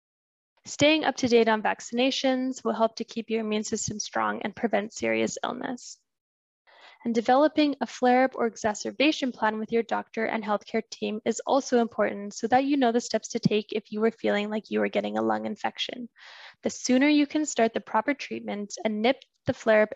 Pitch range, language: 215-255 Hz, English